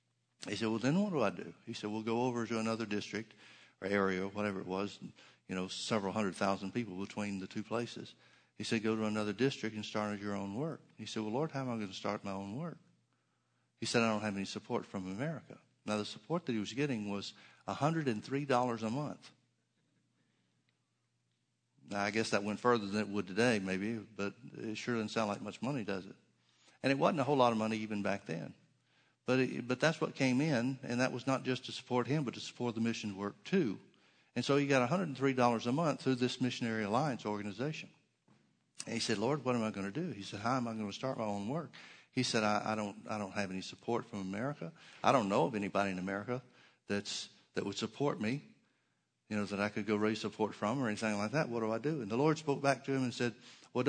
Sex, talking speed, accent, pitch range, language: male, 240 wpm, American, 105-130 Hz, English